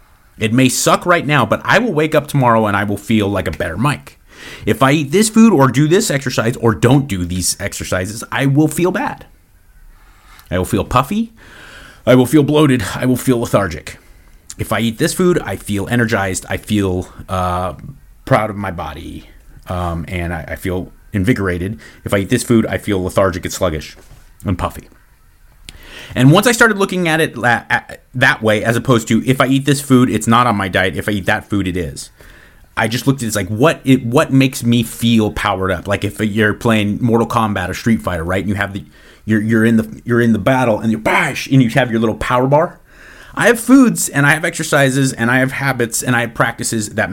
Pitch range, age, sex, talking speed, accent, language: 95-135 Hz, 30-49, male, 225 wpm, American, English